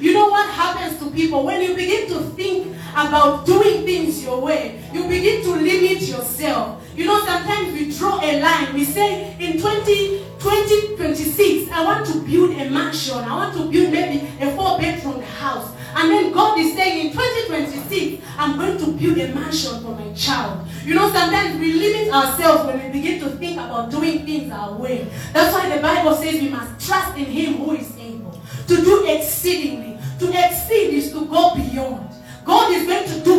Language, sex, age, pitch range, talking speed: English, female, 30-49, 290-370 Hz, 190 wpm